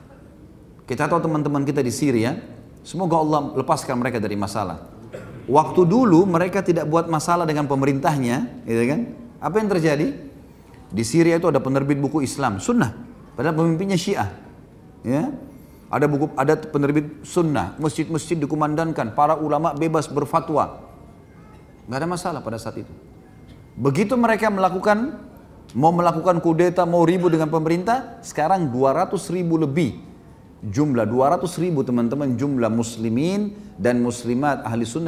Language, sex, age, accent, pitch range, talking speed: English, male, 30-49, Indonesian, 125-175 Hz, 135 wpm